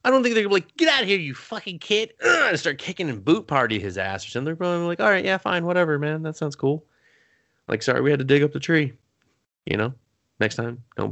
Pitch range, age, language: 100-140 Hz, 20-39, English